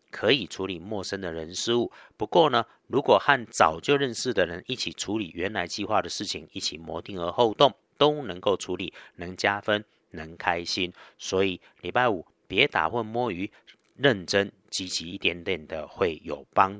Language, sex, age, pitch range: Chinese, male, 50-69, 95-125 Hz